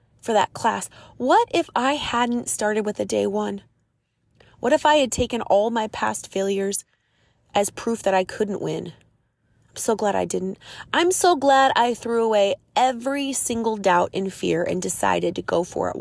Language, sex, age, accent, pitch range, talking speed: English, female, 20-39, American, 170-225 Hz, 185 wpm